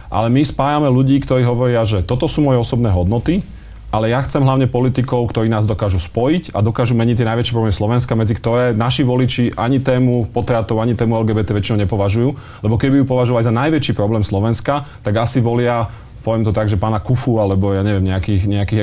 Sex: male